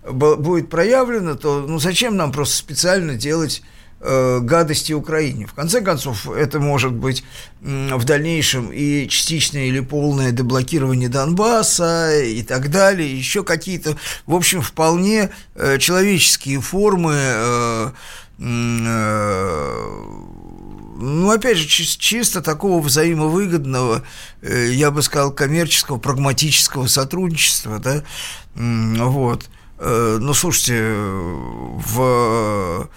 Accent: native